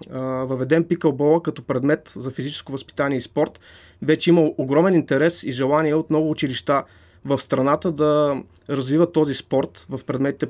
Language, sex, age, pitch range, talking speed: Bulgarian, male, 20-39, 140-170 Hz, 150 wpm